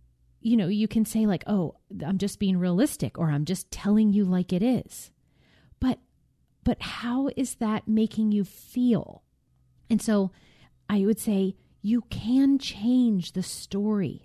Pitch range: 175-220 Hz